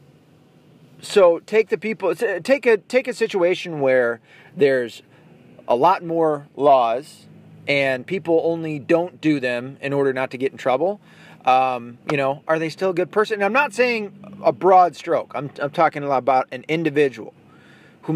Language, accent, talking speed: English, American, 170 wpm